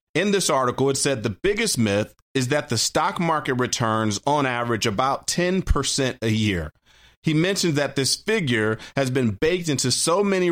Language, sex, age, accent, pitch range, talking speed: English, male, 40-59, American, 115-155 Hz, 175 wpm